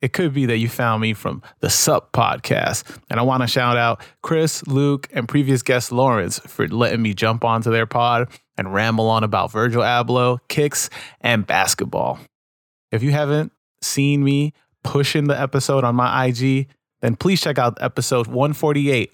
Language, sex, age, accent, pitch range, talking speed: English, male, 20-39, American, 115-140 Hz, 175 wpm